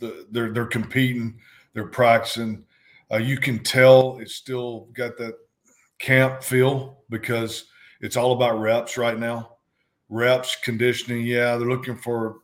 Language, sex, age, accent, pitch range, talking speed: English, male, 50-69, American, 110-125 Hz, 140 wpm